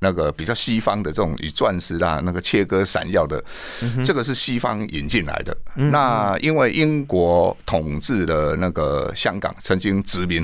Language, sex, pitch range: Chinese, male, 85-110 Hz